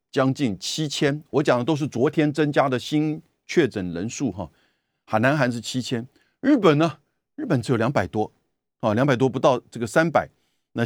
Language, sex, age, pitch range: Chinese, male, 50-69, 105-150 Hz